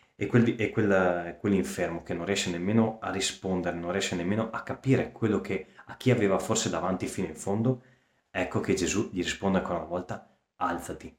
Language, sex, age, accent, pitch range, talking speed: Italian, male, 30-49, native, 85-110 Hz, 175 wpm